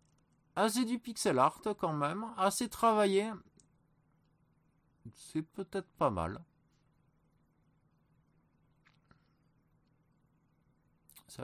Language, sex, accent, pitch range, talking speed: French, male, French, 115-160 Hz, 75 wpm